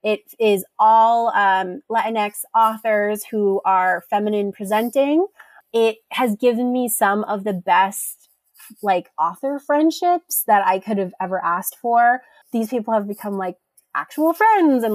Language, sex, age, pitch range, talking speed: English, female, 30-49, 200-255 Hz, 145 wpm